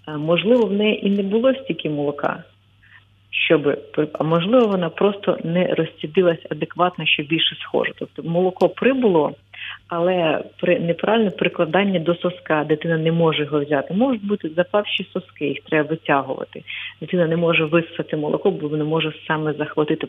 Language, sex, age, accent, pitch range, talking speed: Ukrainian, female, 40-59, native, 160-205 Hz, 150 wpm